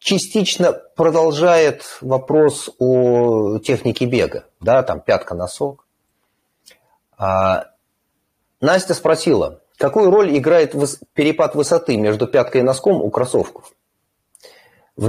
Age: 30-49